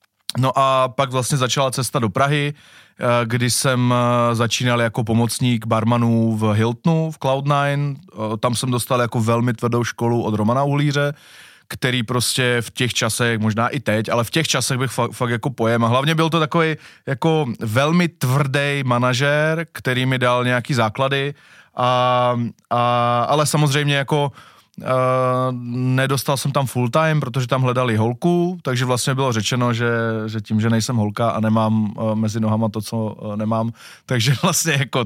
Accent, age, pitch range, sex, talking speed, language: native, 20-39, 115-140 Hz, male, 165 wpm, Czech